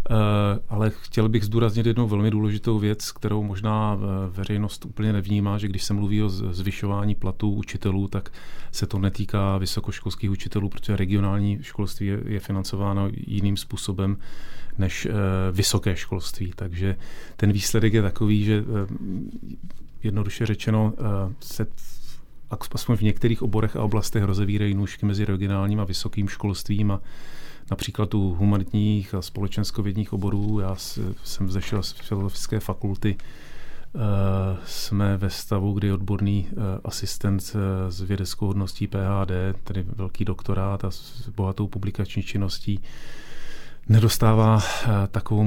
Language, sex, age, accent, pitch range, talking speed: Czech, male, 40-59, native, 95-105 Hz, 120 wpm